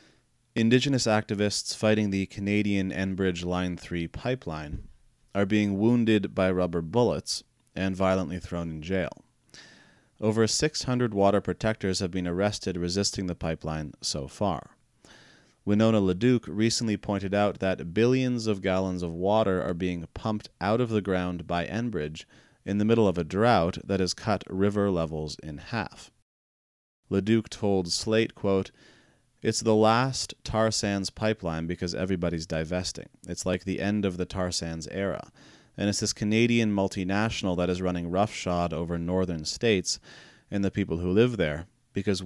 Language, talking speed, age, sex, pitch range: English, 150 wpm, 30-49, male, 85-105 Hz